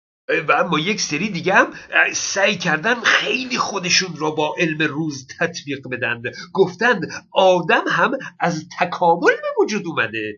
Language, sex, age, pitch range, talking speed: Persian, male, 50-69, 165-245 Hz, 140 wpm